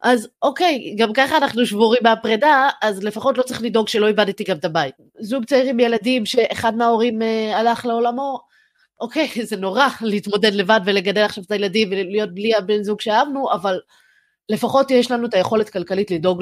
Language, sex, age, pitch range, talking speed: Hebrew, female, 20-39, 185-240 Hz, 175 wpm